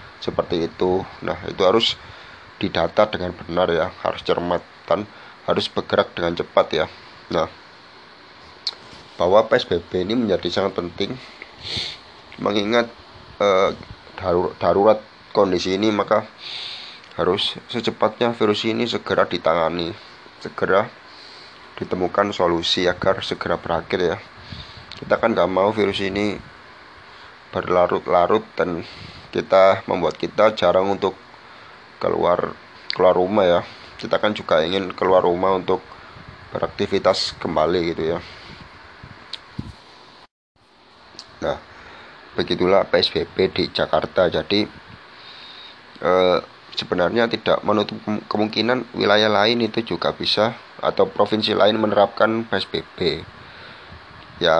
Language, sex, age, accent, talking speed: Indonesian, male, 30-49, native, 100 wpm